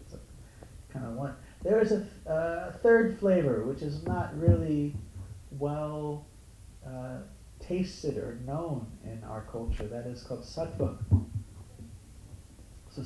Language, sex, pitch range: English, male, 105-150 Hz